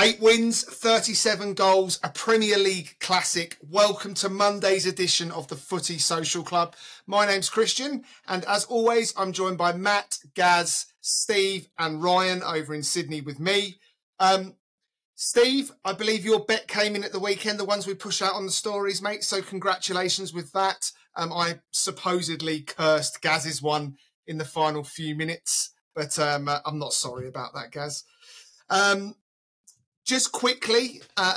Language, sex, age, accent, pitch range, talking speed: English, male, 30-49, British, 160-200 Hz, 160 wpm